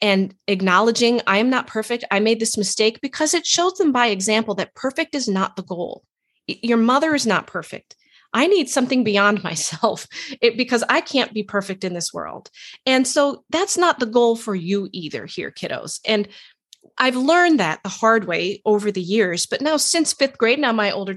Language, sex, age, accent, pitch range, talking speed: English, female, 30-49, American, 195-255 Hz, 195 wpm